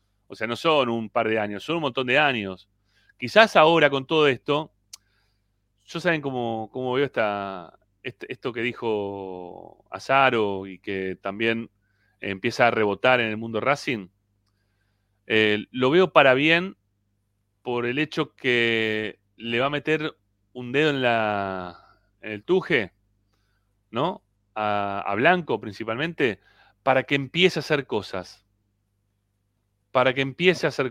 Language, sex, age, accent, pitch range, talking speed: Spanish, male, 30-49, Argentinian, 100-130 Hz, 145 wpm